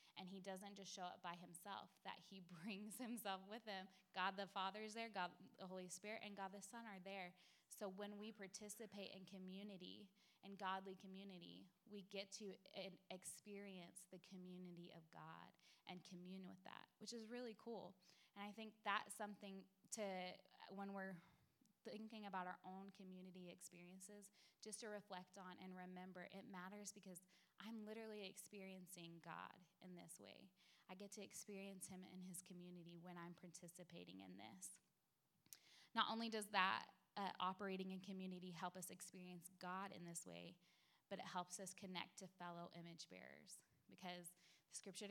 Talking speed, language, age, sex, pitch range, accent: 165 wpm, English, 20-39, female, 180-200 Hz, American